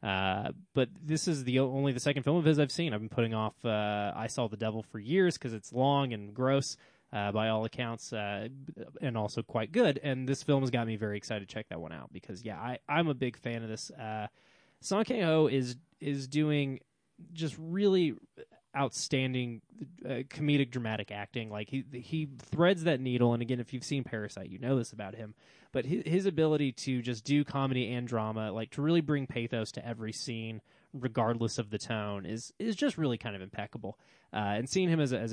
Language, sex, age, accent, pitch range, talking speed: English, male, 20-39, American, 110-145 Hz, 215 wpm